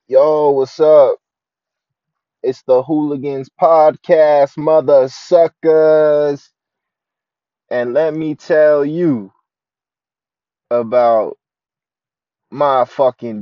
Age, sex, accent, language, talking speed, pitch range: 20-39, male, American, English, 75 wpm, 110-150 Hz